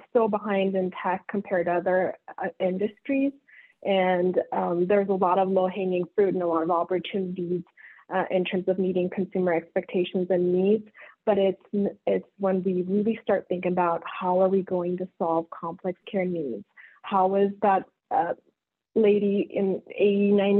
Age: 30-49